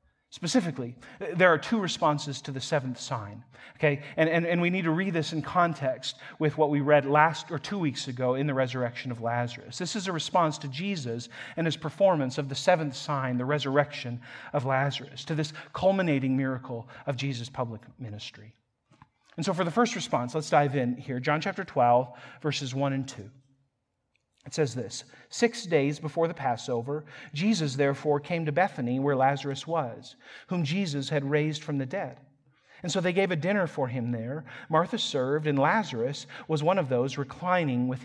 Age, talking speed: 40-59, 185 wpm